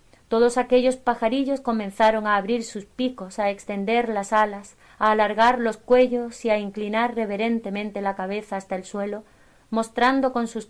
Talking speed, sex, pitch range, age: 155 wpm, female, 200-235 Hz, 30-49